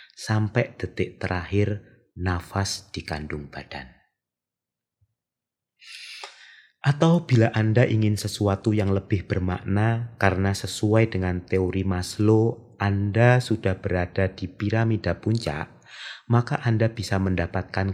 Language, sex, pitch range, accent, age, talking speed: Indonesian, male, 90-110 Hz, native, 30-49, 95 wpm